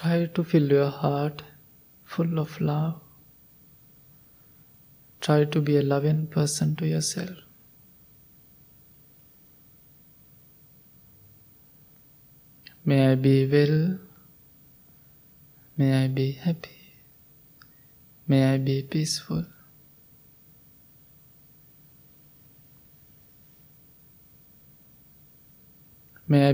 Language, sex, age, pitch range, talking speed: English, male, 20-39, 140-155 Hz, 65 wpm